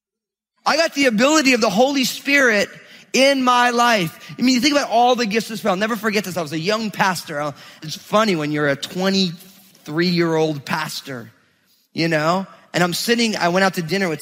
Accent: American